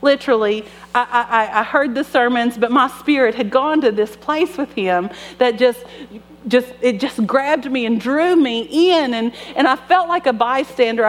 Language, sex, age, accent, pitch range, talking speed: English, female, 40-59, American, 185-260 Hz, 190 wpm